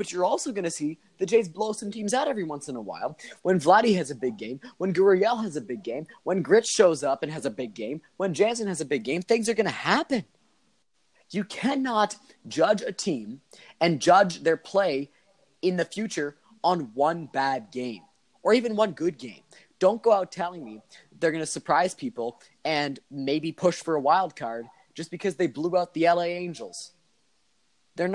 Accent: American